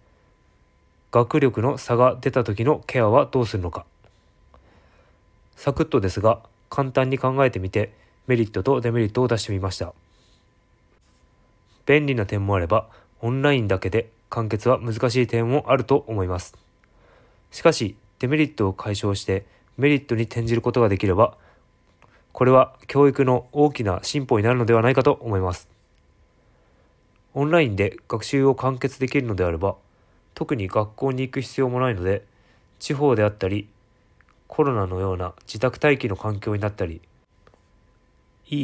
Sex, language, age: male, Japanese, 20-39